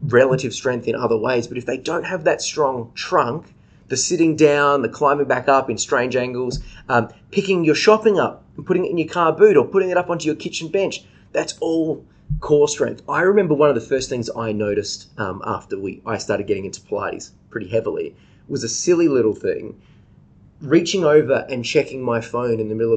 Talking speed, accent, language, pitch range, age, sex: 210 wpm, Australian, English, 120-185 Hz, 20-39, male